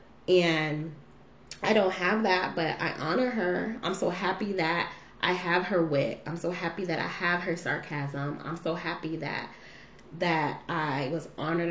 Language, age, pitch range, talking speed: English, 20-39, 170-230 Hz, 170 wpm